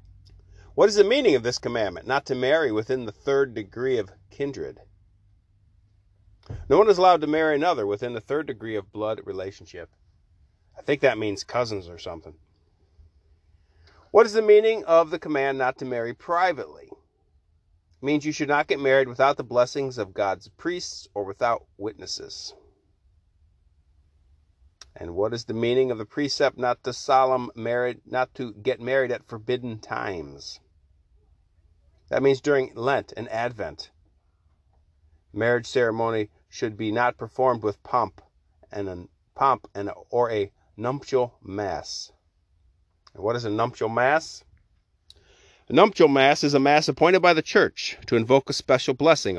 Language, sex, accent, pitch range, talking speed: English, male, American, 85-130 Hz, 155 wpm